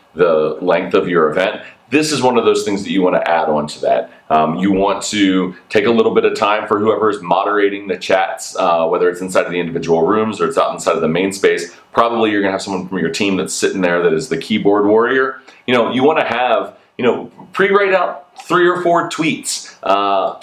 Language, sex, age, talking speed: English, male, 30-49, 240 wpm